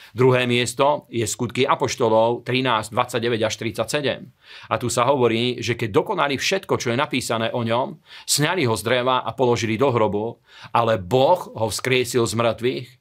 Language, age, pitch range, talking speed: Slovak, 40-59, 115-130 Hz, 165 wpm